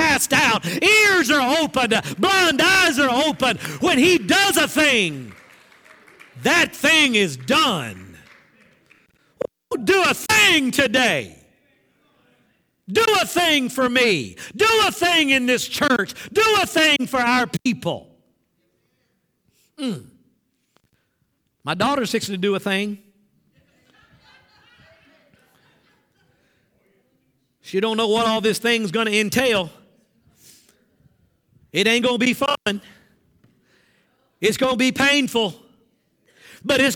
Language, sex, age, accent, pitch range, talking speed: English, male, 50-69, American, 195-285 Hz, 110 wpm